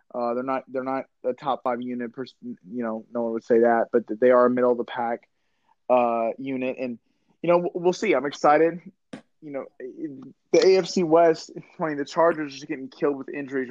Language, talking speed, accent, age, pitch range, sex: English, 215 wpm, American, 20-39, 120-150 Hz, male